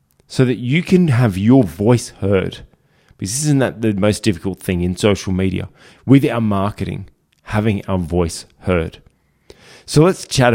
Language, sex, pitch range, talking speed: English, male, 95-125 Hz, 160 wpm